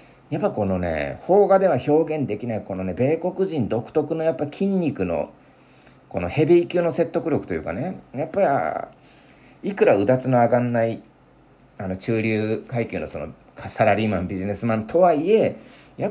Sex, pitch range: male, 100-165 Hz